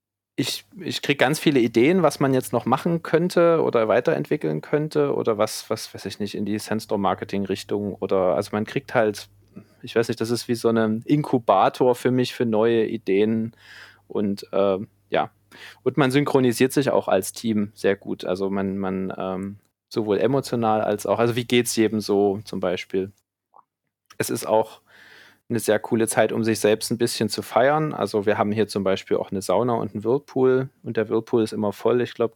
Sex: male